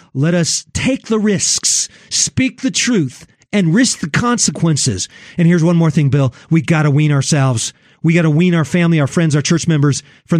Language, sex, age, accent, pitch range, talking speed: English, male, 40-59, American, 150-200 Hz, 200 wpm